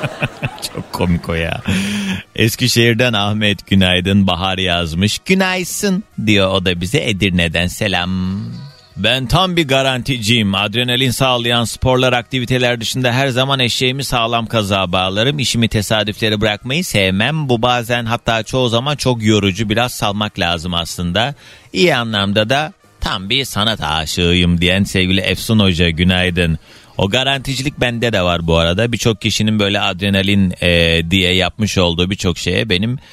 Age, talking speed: 30-49, 135 wpm